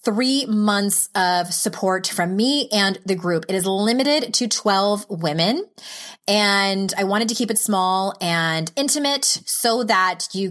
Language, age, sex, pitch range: English, 20-39, female, 175-225 Hz